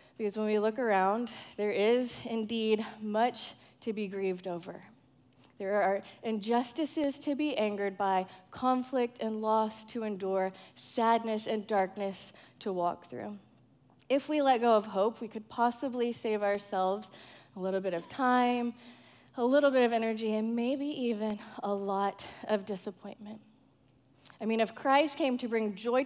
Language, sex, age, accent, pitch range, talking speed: English, female, 20-39, American, 195-245 Hz, 155 wpm